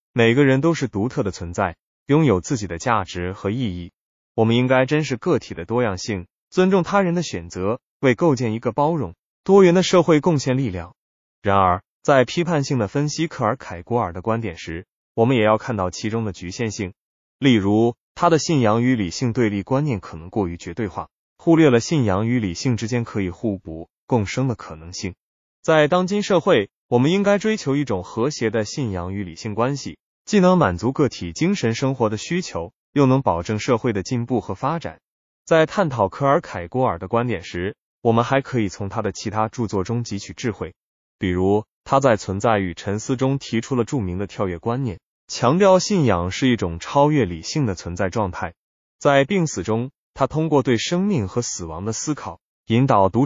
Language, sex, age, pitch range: Chinese, male, 20-39, 95-140 Hz